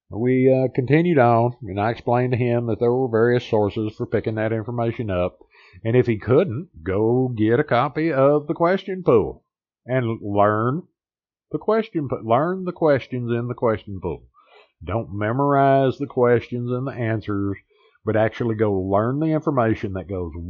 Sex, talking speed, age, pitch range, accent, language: male, 170 wpm, 50-69, 100-130 Hz, American, English